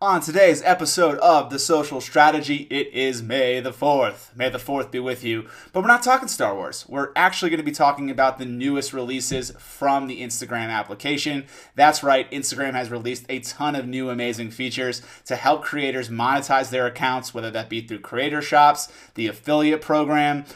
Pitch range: 125-150 Hz